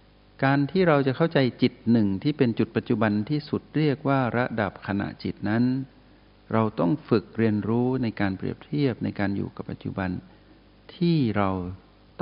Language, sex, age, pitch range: Thai, male, 60-79, 100-120 Hz